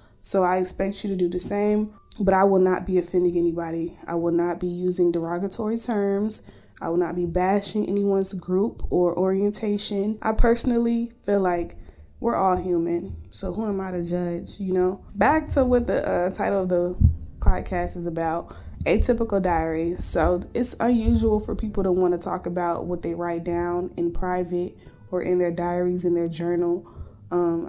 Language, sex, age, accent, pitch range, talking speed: English, female, 20-39, American, 175-205 Hz, 180 wpm